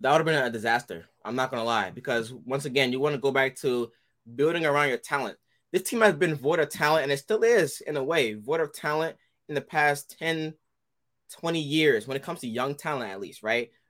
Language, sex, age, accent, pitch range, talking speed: English, male, 20-39, American, 135-175 Hz, 240 wpm